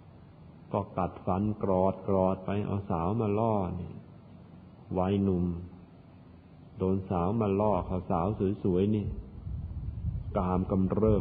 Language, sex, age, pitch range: Thai, male, 50-69, 90-105 Hz